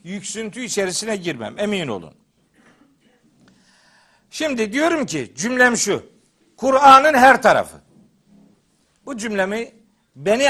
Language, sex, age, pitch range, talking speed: Turkish, male, 60-79, 200-260 Hz, 90 wpm